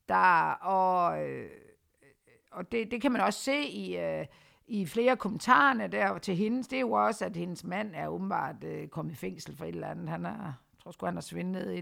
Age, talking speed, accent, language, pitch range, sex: 60-79, 225 wpm, native, Danish, 185-245 Hz, female